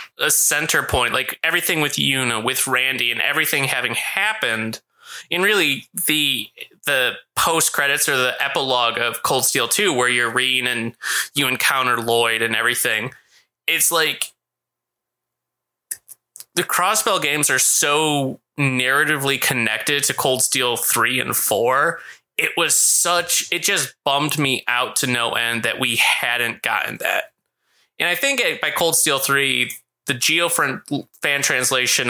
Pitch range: 120-145 Hz